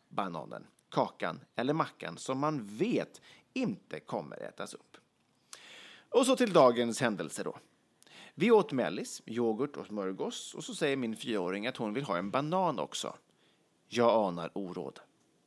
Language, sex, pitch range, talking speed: English, male, 105-170 Hz, 145 wpm